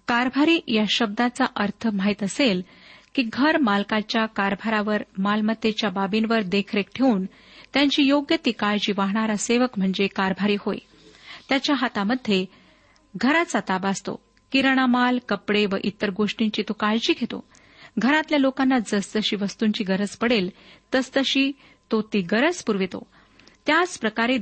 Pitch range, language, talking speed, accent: 200-245 Hz, Marathi, 120 wpm, native